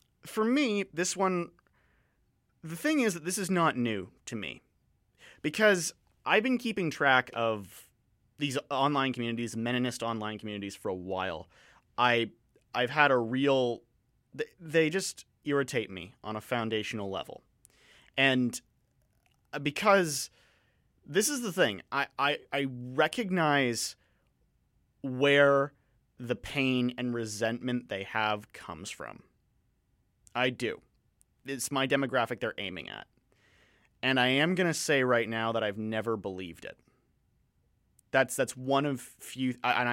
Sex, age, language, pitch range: male, 30-49, English, 115-140 Hz